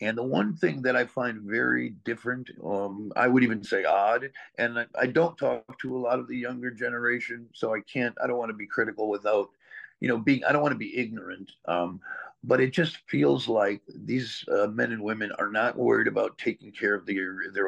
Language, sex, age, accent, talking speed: English, male, 50-69, American, 225 wpm